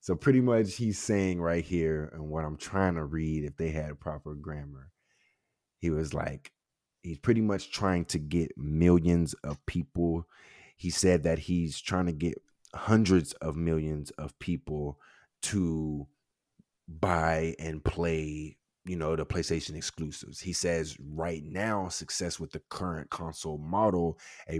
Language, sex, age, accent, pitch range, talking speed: English, male, 30-49, American, 80-90 Hz, 150 wpm